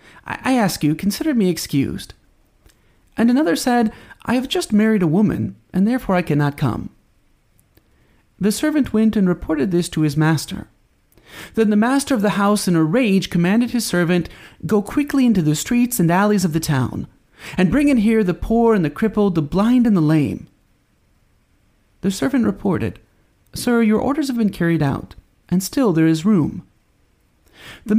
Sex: male